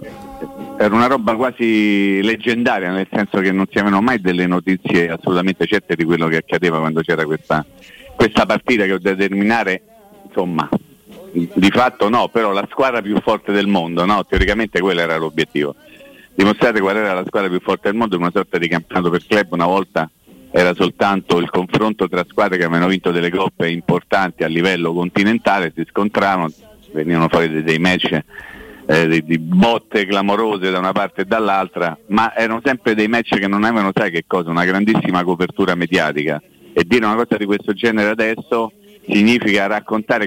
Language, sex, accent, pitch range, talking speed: Italian, male, native, 90-110 Hz, 180 wpm